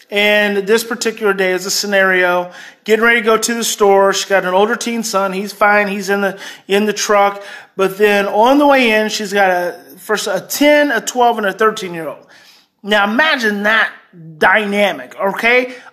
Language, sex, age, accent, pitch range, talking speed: English, male, 30-49, American, 190-230 Hz, 190 wpm